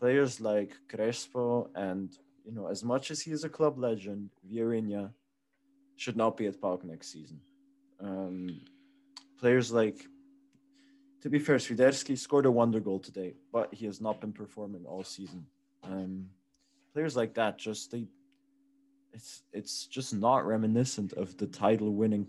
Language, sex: English, male